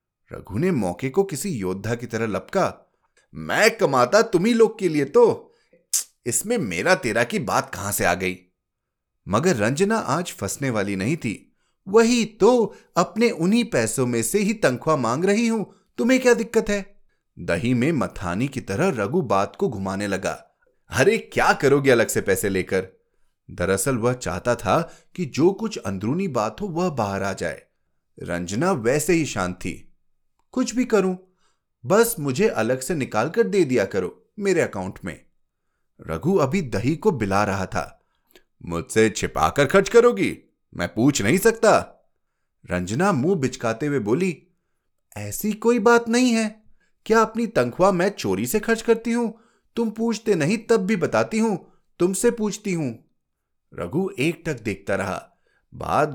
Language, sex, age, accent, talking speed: Hindi, male, 30-49, native, 155 wpm